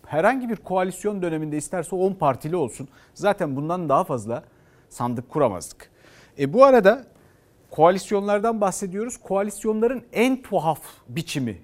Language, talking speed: Turkish, 120 wpm